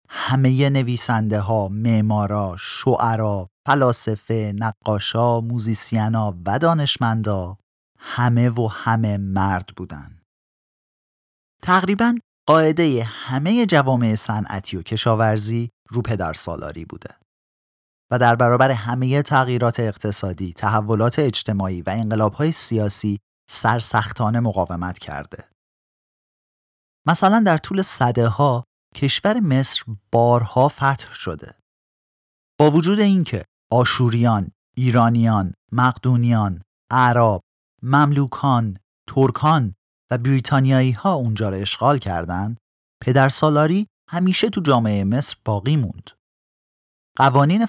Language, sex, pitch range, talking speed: Persian, male, 105-135 Hz, 90 wpm